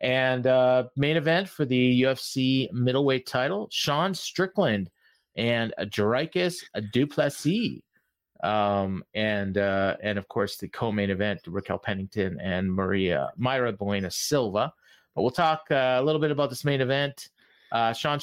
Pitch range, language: 105-145 Hz, English